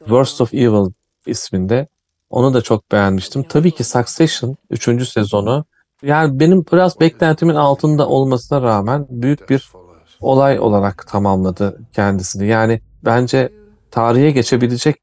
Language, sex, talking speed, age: Turkish, male, 120 wpm, 40-59